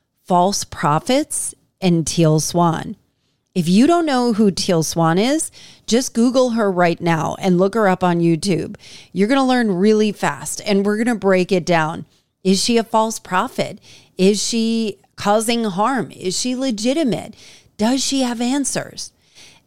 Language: English